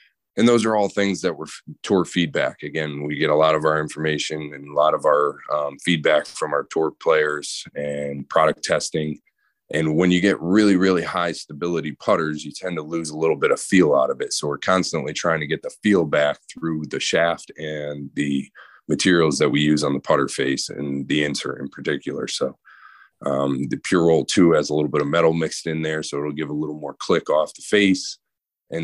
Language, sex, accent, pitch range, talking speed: English, male, American, 75-85 Hz, 220 wpm